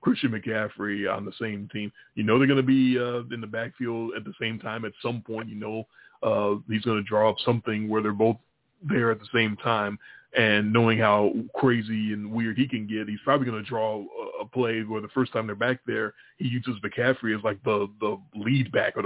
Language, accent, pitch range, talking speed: English, American, 105-130 Hz, 230 wpm